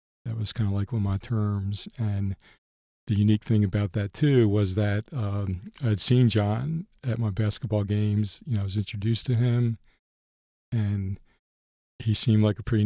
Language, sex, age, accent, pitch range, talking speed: English, male, 40-59, American, 105-115 Hz, 180 wpm